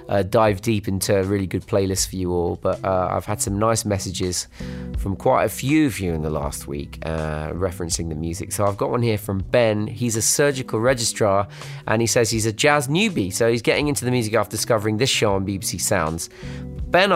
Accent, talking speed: British, 225 wpm